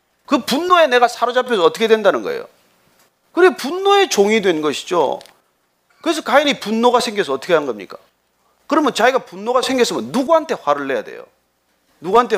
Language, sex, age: Korean, male, 40-59